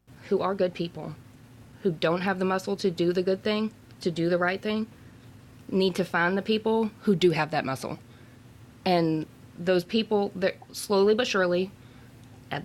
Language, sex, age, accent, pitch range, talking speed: English, female, 20-39, American, 125-195 Hz, 175 wpm